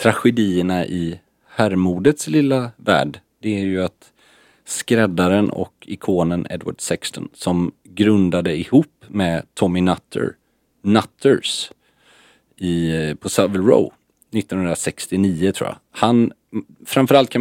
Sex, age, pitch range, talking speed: male, 40-59, 85-110 Hz, 100 wpm